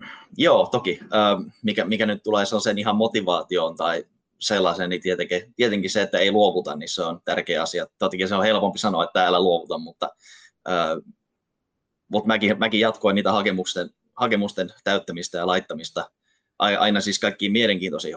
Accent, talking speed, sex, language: native, 155 wpm, male, Finnish